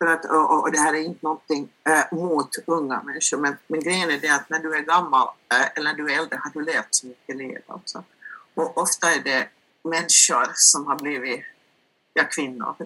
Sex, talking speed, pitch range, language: female, 215 wpm, 155-225 Hz, Swedish